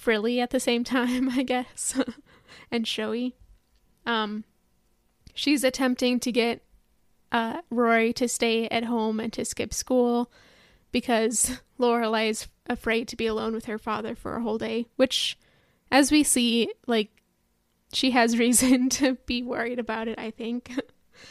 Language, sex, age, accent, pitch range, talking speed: English, female, 10-29, American, 225-250 Hz, 150 wpm